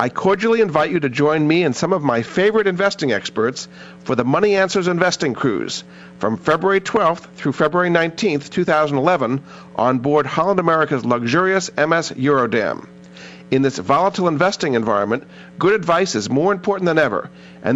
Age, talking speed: 50-69, 160 wpm